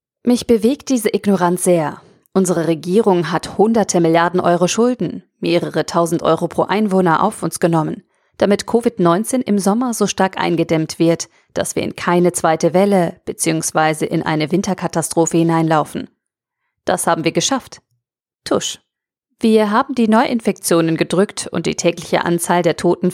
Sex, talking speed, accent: female, 145 wpm, German